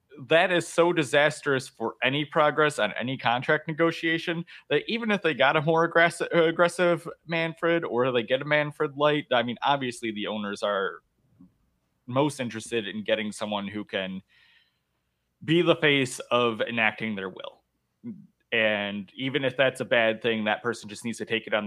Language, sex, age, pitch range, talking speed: English, male, 20-39, 115-165 Hz, 170 wpm